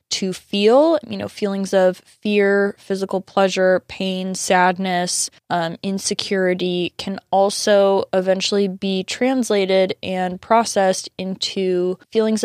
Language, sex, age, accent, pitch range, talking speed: English, female, 20-39, American, 180-200 Hz, 105 wpm